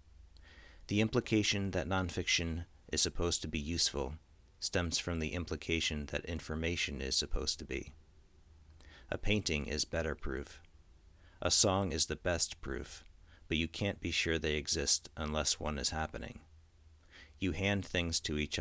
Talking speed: 150 wpm